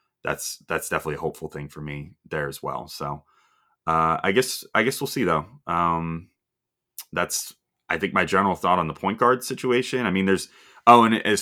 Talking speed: 200 wpm